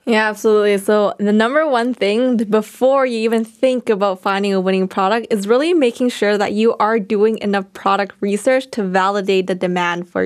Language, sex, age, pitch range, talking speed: English, female, 10-29, 195-235 Hz, 185 wpm